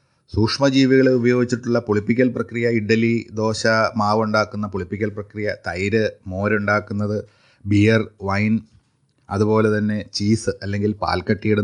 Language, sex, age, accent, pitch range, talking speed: Malayalam, male, 30-49, native, 105-130 Hz, 100 wpm